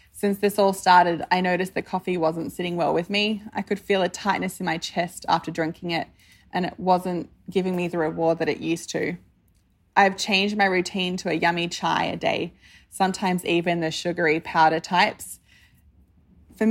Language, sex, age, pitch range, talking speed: English, female, 20-39, 170-195 Hz, 185 wpm